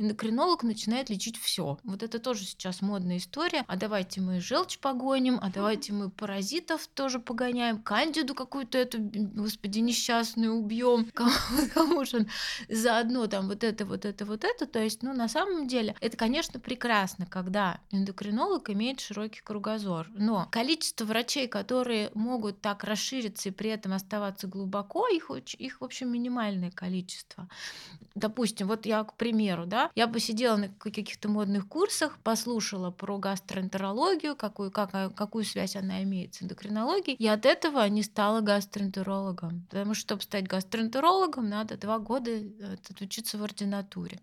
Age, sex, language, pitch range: 20-39, female, Russian, 200-240 Hz